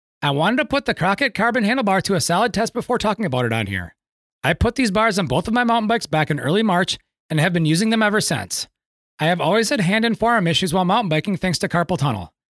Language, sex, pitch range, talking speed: English, male, 155-230 Hz, 255 wpm